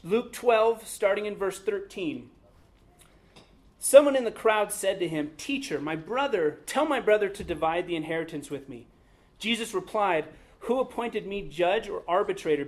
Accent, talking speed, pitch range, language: American, 155 wpm, 165-230 Hz, English